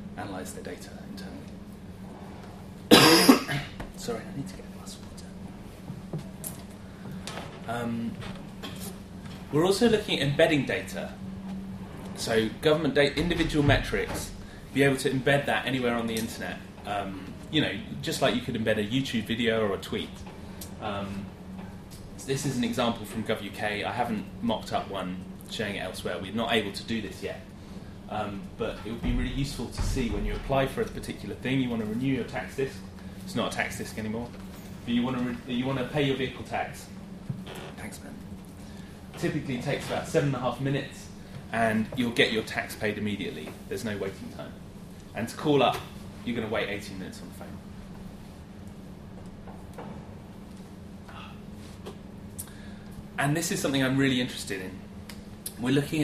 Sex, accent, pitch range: male, British, 95-125 Hz